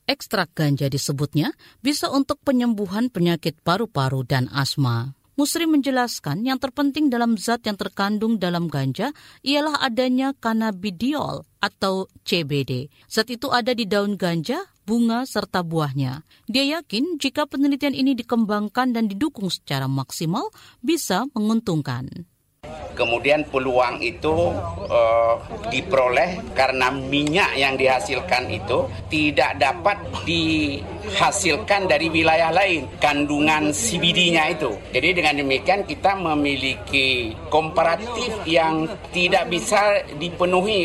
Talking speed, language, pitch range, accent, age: 110 wpm, Indonesian, 150-250 Hz, native, 50-69